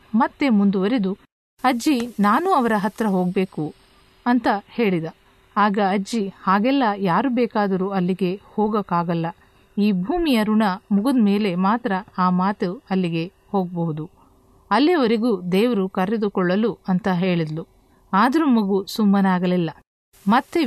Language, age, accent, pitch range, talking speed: Kannada, 50-69, native, 190-235 Hz, 100 wpm